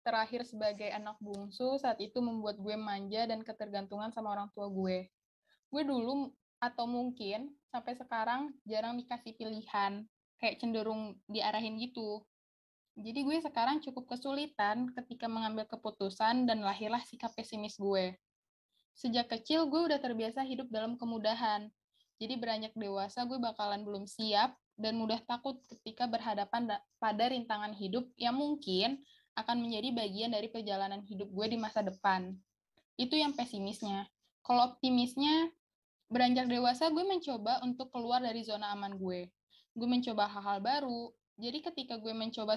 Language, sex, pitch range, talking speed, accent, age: Indonesian, female, 210-250 Hz, 140 wpm, native, 10-29